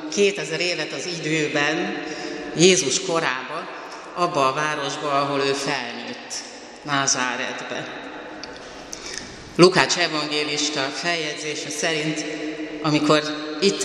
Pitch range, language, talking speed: 150-175 Hz, Hungarian, 85 wpm